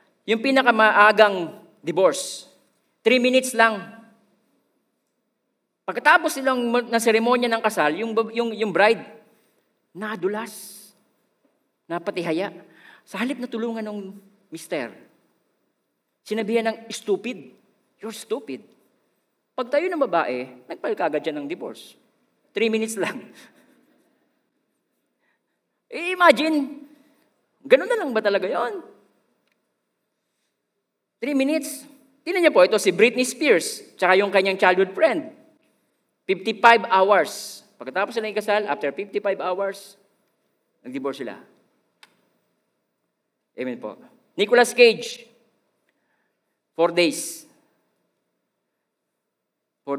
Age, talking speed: 40-59, 90 wpm